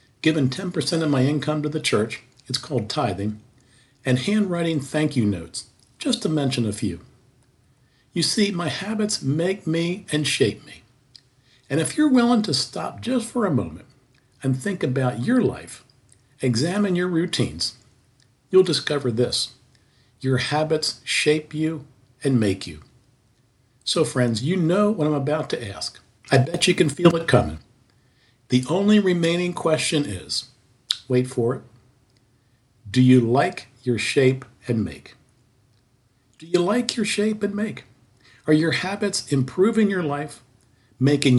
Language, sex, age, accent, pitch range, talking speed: English, male, 50-69, American, 120-160 Hz, 150 wpm